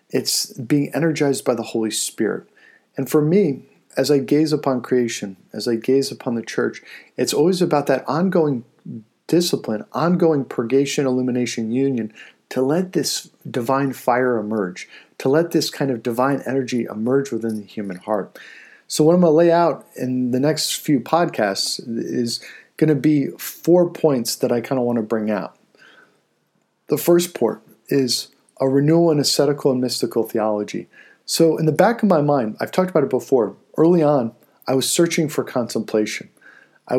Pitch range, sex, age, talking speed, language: 120-155 Hz, male, 50-69, 170 wpm, English